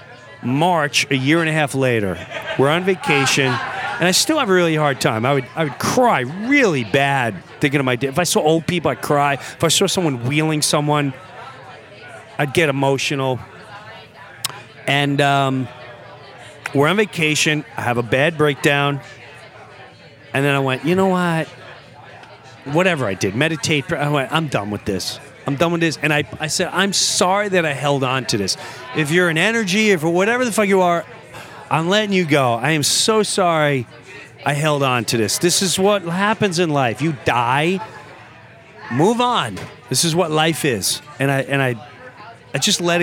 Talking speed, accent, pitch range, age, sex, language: 185 wpm, American, 130-170 Hz, 40-59, male, English